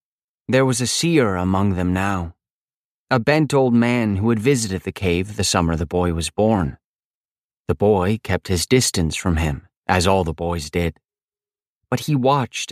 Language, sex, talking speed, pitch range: English, male, 175 wpm, 90-125 Hz